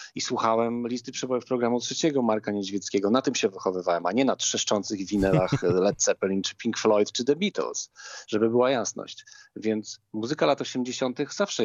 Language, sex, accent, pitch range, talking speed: Polish, male, native, 105-130 Hz, 170 wpm